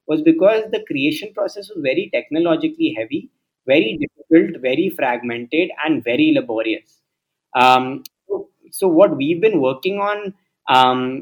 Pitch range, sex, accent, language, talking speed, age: 140-195 Hz, male, native, Hindi, 130 wpm, 20-39